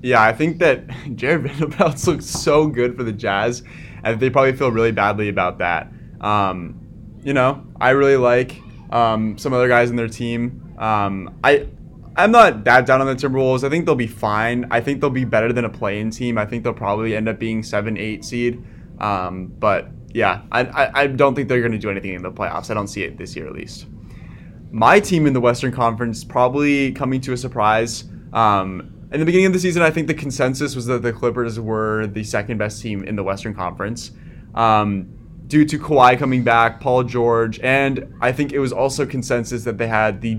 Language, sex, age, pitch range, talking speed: English, male, 20-39, 105-135 Hz, 215 wpm